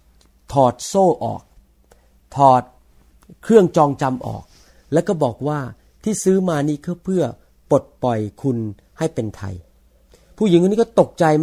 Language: Thai